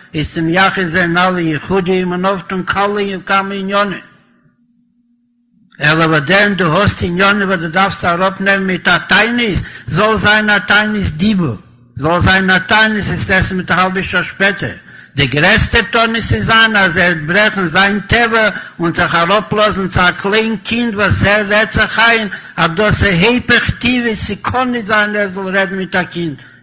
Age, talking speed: 60-79, 120 wpm